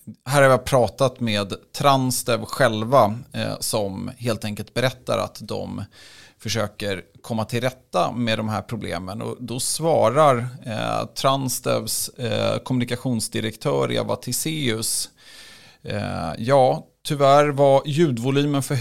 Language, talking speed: Swedish, 120 wpm